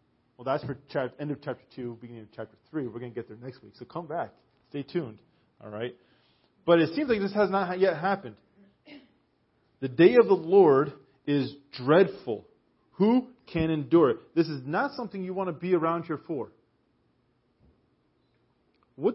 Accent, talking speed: American, 180 wpm